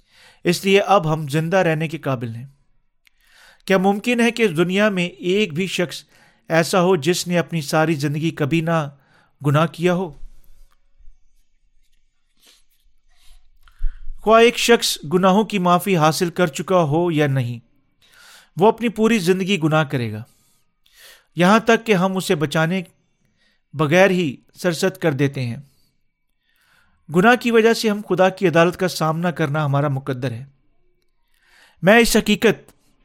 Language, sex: Urdu, male